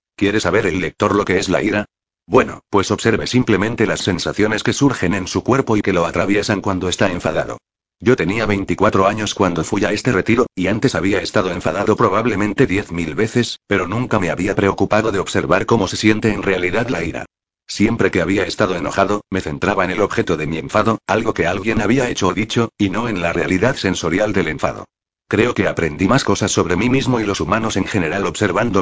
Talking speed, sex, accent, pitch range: 210 wpm, male, Spanish, 95-110 Hz